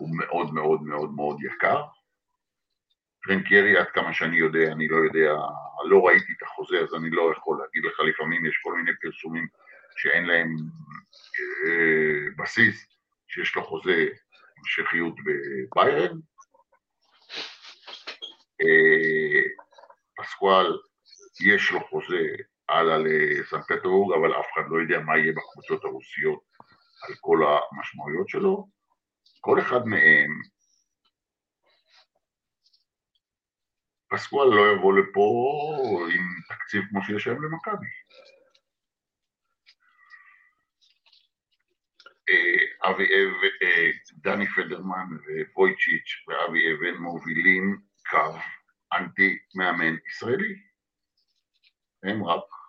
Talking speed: 100 wpm